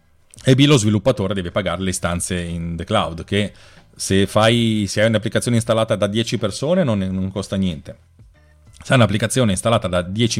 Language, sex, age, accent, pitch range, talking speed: Italian, male, 40-59, native, 95-115 Hz, 175 wpm